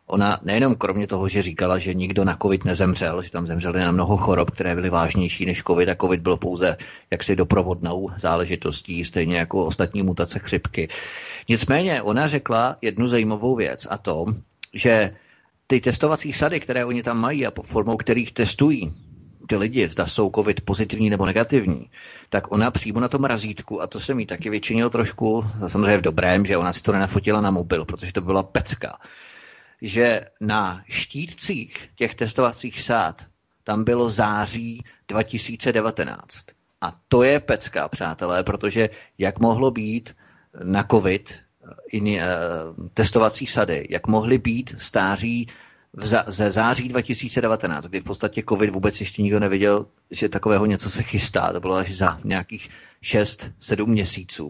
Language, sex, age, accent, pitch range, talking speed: Czech, male, 30-49, native, 95-115 Hz, 155 wpm